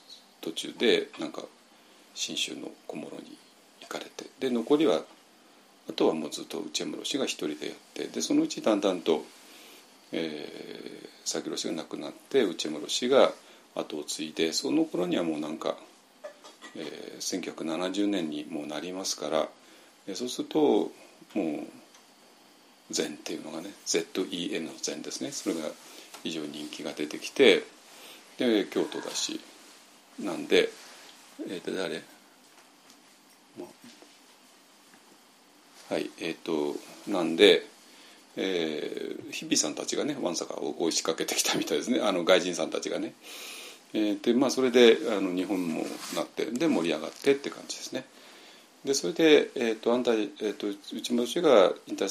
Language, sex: Japanese, male